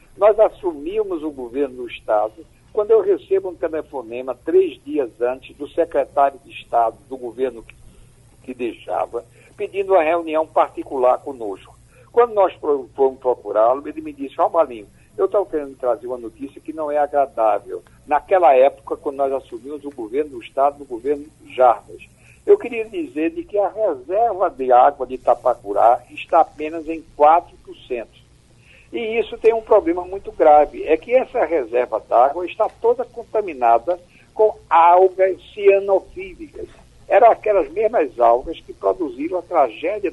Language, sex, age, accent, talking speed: Portuguese, male, 60-79, Brazilian, 150 wpm